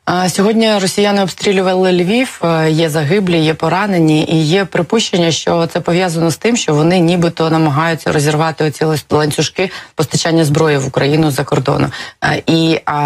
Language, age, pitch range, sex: Ukrainian, 20-39, 140-160 Hz, female